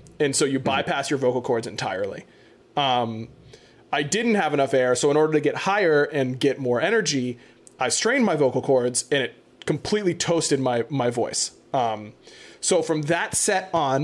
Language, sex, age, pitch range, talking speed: English, male, 20-39, 130-170 Hz, 180 wpm